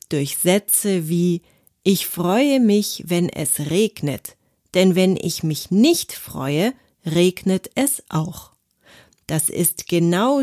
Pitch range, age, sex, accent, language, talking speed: 155-205 Hz, 40-59, female, German, German, 120 wpm